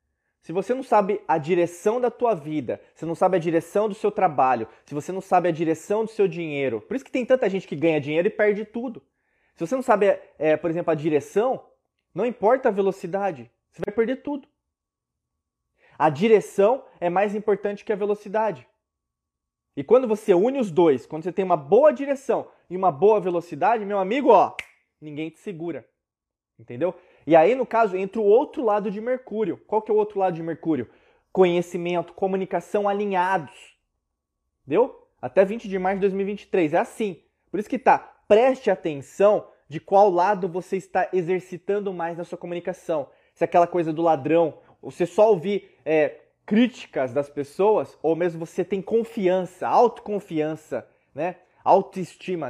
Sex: male